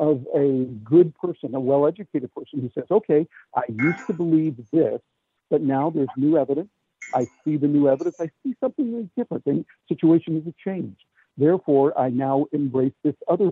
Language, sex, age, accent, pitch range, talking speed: English, male, 60-79, American, 140-175 Hz, 180 wpm